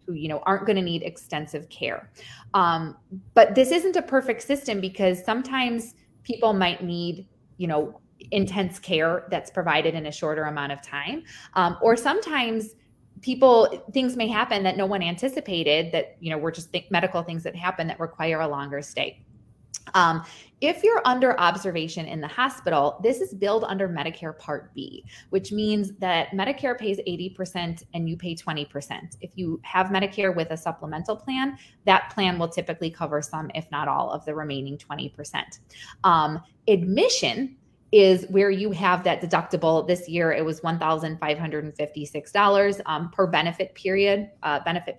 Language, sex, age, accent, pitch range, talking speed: English, female, 20-39, American, 155-200 Hz, 160 wpm